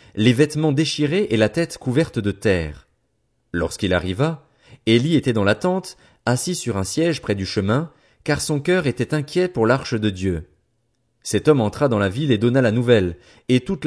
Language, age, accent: French, 30-49, French